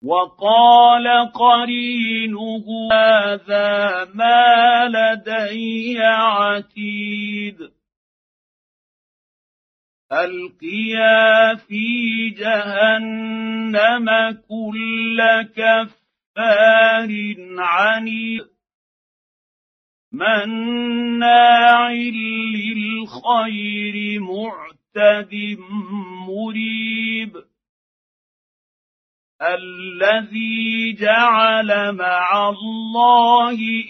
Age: 50-69